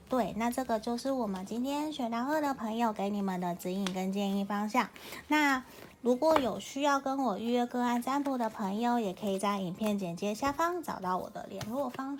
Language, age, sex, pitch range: Chinese, 20-39, female, 195-260 Hz